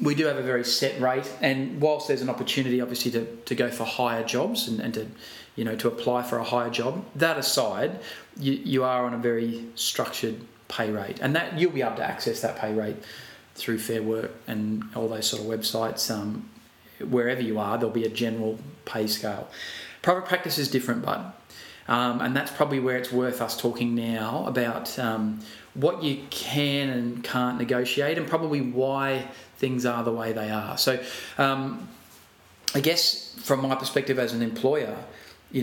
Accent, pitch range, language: Australian, 115-130 Hz, English